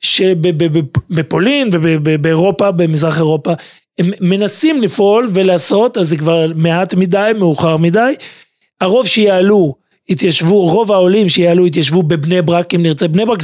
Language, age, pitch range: Hebrew, 40-59, 165-200 Hz